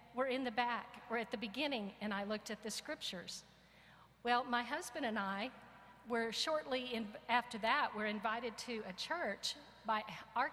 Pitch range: 210-270 Hz